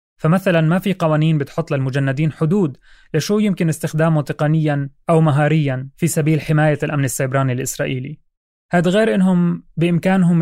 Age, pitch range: 30-49, 135-170 Hz